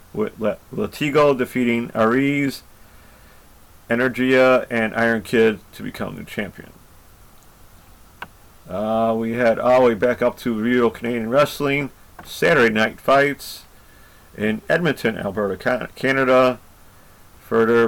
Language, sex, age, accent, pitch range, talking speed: English, male, 40-59, American, 105-130 Hz, 105 wpm